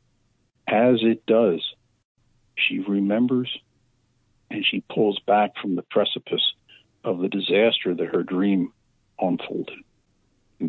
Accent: American